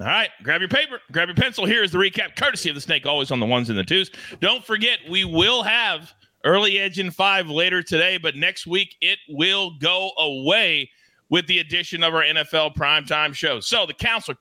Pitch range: 160-195 Hz